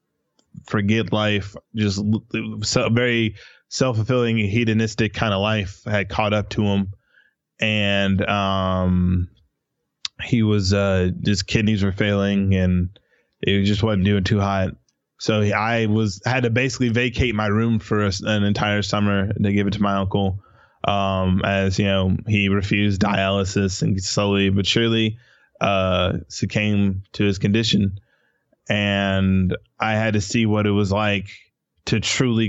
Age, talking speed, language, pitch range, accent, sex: 20-39, 140 wpm, English, 100-110 Hz, American, male